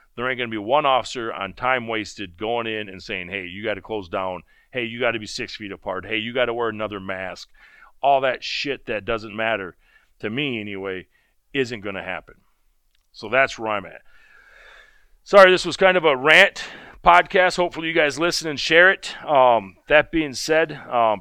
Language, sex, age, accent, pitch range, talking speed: English, male, 40-59, American, 110-145 Hz, 205 wpm